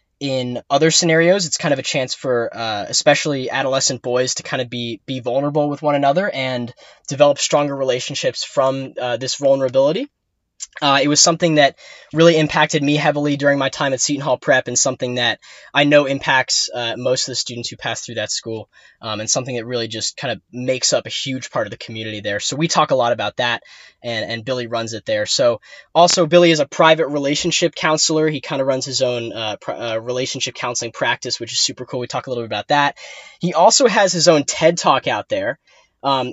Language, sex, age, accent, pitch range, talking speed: English, male, 10-29, American, 125-160 Hz, 220 wpm